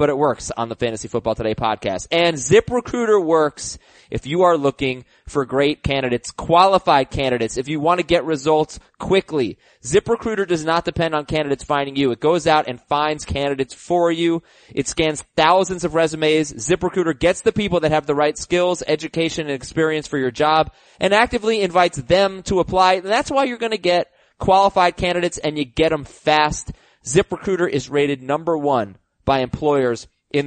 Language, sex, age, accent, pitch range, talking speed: English, male, 20-39, American, 140-195 Hz, 180 wpm